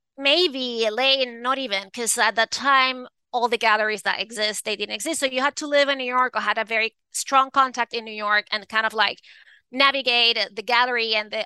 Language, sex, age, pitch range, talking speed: English, female, 20-39, 220-270 Hz, 220 wpm